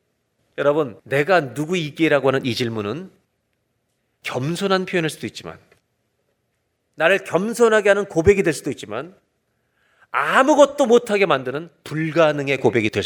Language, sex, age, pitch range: Korean, male, 40-59, 150-225 Hz